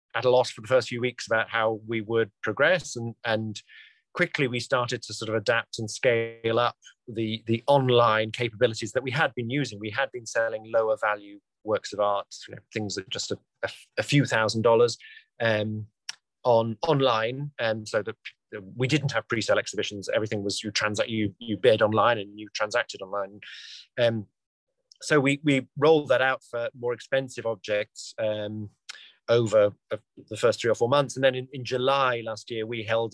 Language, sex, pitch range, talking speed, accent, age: English, male, 105-130 Hz, 175 wpm, British, 30-49